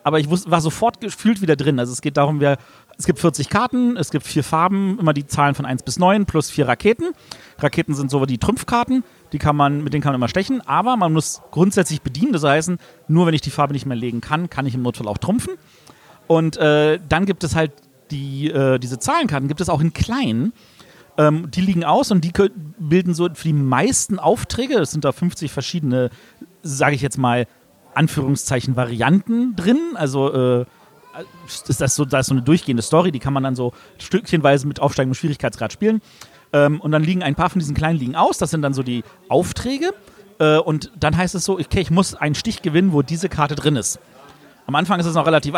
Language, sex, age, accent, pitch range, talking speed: German, male, 40-59, German, 140-185 Hz, 220 wpm